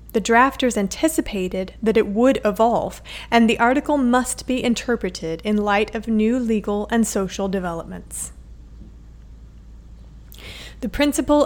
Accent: American